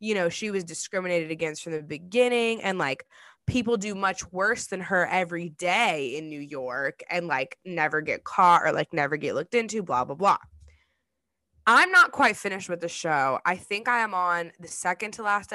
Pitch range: 165-230 Hz